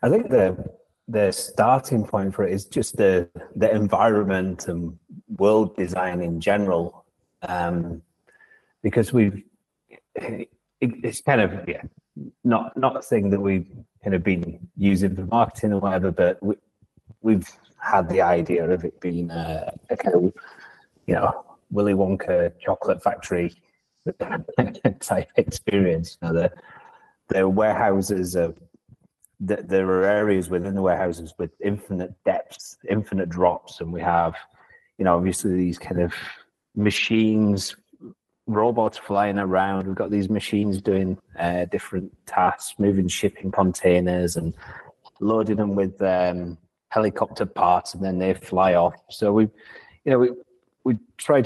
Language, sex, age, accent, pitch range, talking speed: English, male, 30-49, British, 90-105 Hz, 140 wpm